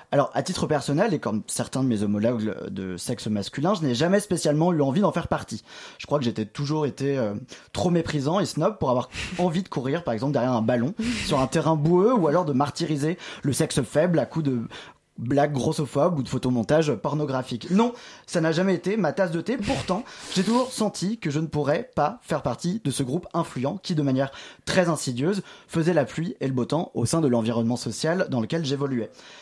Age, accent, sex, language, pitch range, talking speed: 20-39, French, male, French, 130-180 Hz, 220 wpm